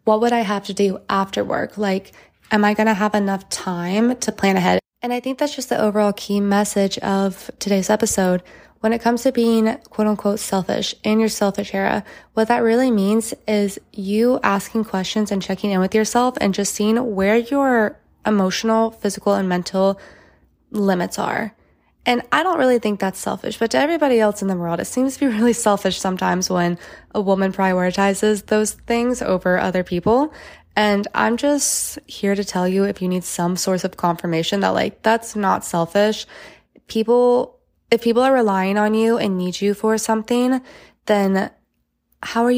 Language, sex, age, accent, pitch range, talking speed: English, female, 20-39, American, 195-235 Hz, 185 wpm